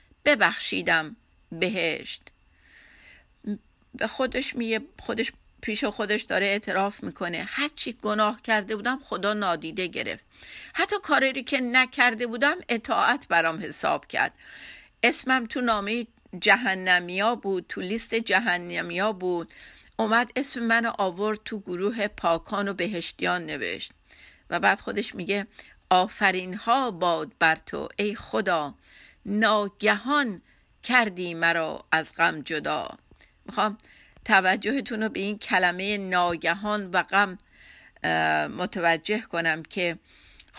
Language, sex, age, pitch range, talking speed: Persian, female, 50-69, 185-240 Hz, 110 wpm